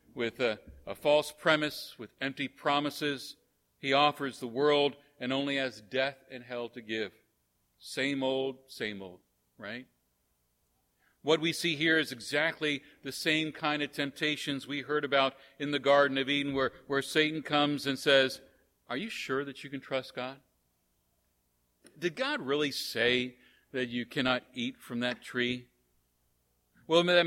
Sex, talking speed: male, 155 wpm